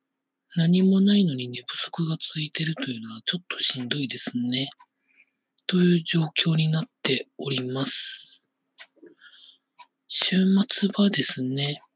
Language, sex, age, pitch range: Japanese, male, 40-59, 130-185 Hz